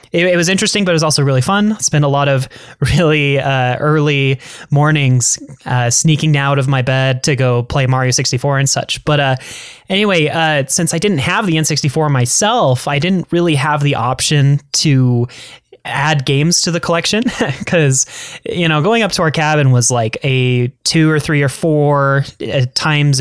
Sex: male